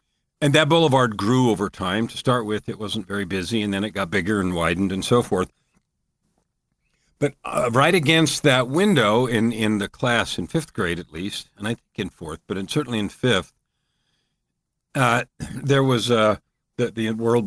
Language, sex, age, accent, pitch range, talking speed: English, male, 50-69, American, 100-125 Hz, 185 wpm